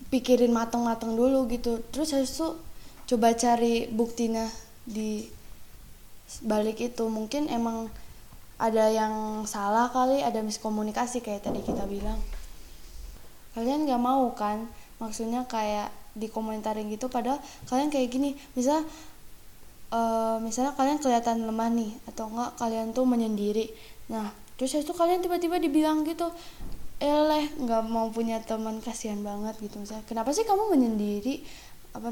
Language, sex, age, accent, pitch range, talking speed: Indonesian, female, 10-29, native, 215-255 Hz, 135 wpm